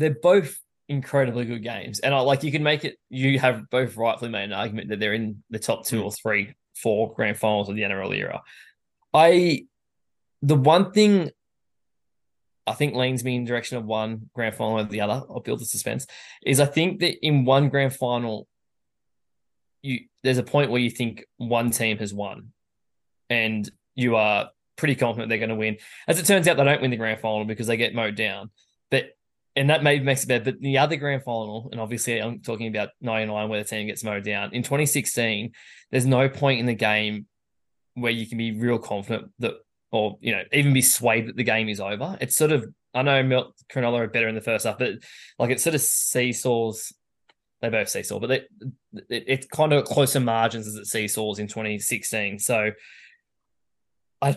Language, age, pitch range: English, 20-39, 110-140 Hz